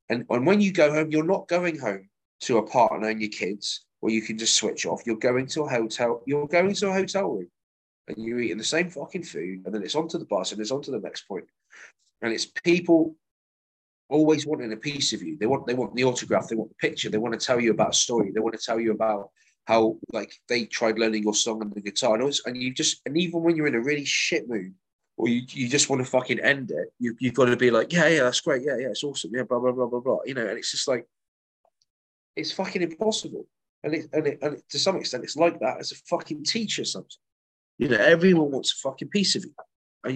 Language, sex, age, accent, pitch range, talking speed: English, male, 30-49, British, 115-155 Hz, 260 wpm